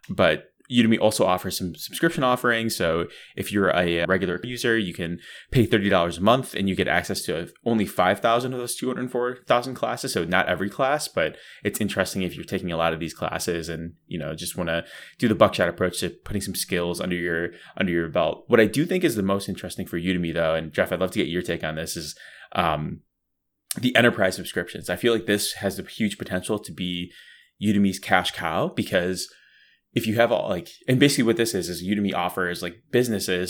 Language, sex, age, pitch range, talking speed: English, male, 20-39, 90-110 Hz, 215 wpm